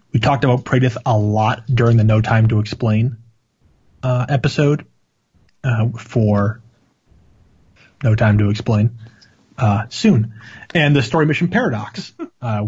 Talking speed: 135 wpm